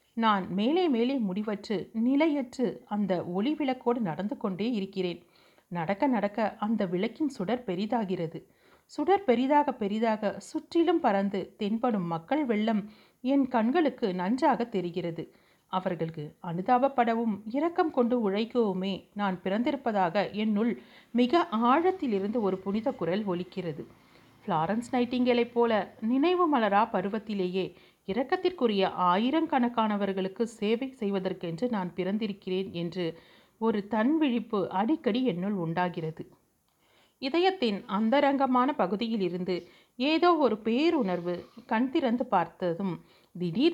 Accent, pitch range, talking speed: native, 190-250 Hz, 100 wpm